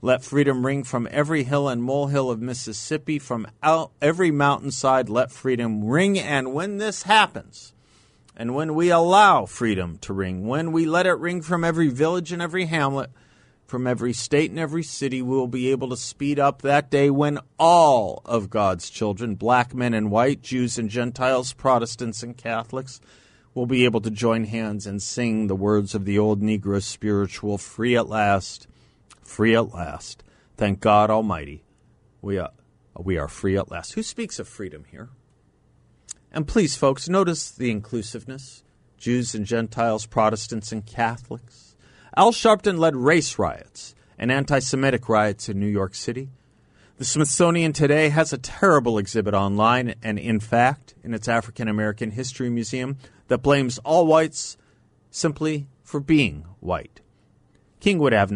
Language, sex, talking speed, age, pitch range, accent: English, male, 160 wpm, 50-69, 110-145 Hz, American